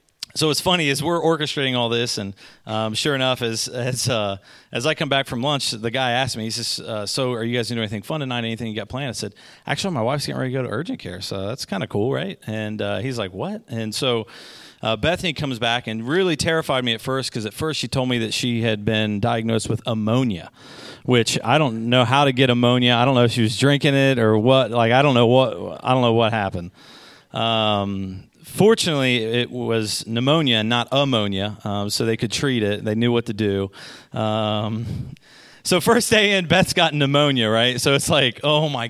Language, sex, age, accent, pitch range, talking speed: English, male, 40-59, American, 110-140 Hz, 230 wpm